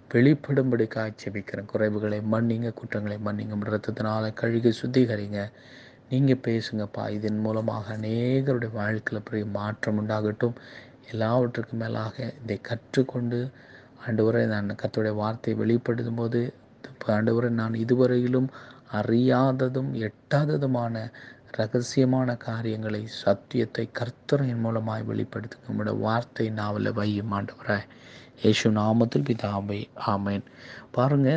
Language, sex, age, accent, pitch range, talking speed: Tamil, male, 30-49, native, 105-125 Hz, 90 wpm